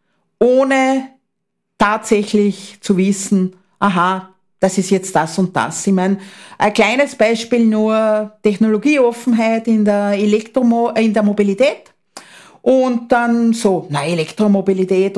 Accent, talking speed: Austrian, 115 wpm